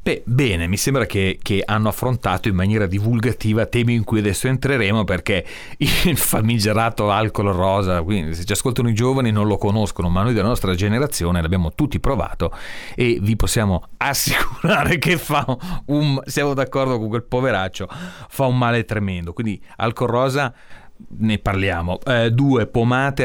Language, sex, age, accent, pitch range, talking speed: Italian, male, 30-49, native, 90-120 Hz, 160 wpm